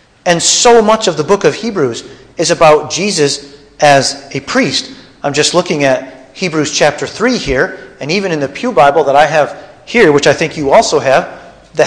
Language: English